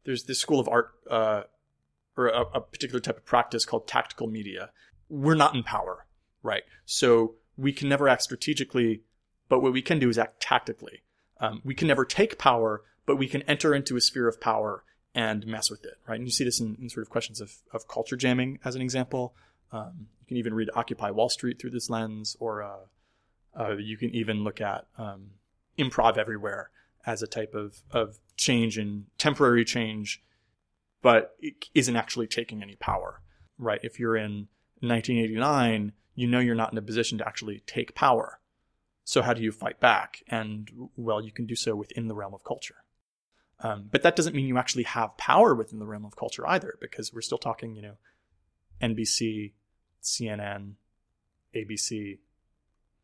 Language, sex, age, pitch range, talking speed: English, male, 30-49, 105-125 Hz, 190 wpm